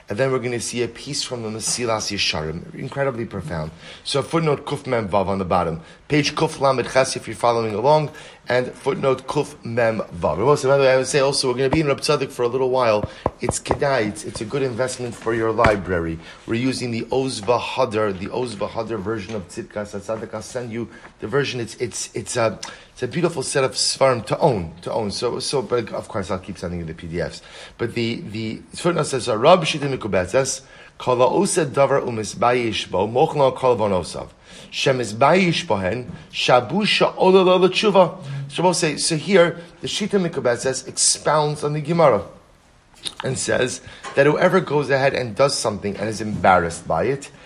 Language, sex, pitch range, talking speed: English, male, 115-160 Hz, 165 wpm